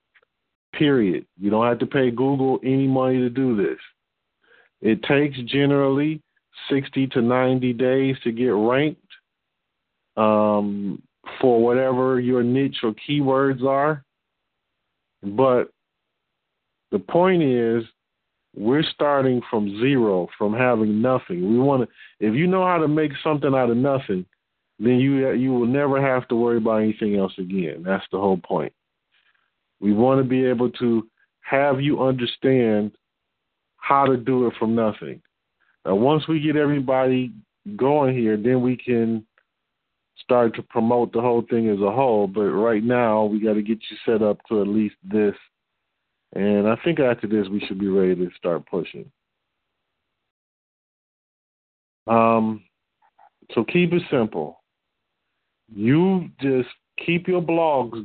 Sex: male